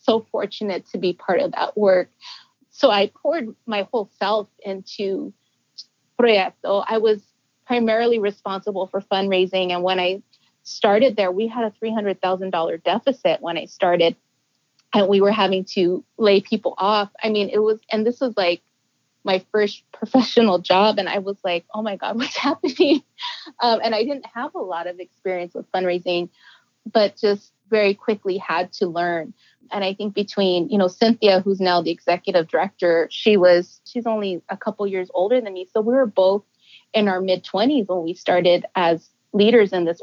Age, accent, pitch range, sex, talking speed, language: 30-49, American, 180-220 Hz, female, 175 wpm, English